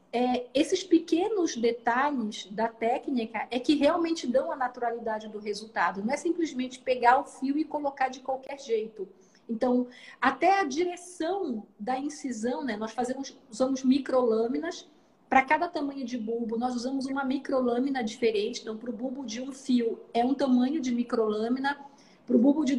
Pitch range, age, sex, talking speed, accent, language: 235-295 Hz, 40-59, female, 165 wpm, Brazilian, Portuguese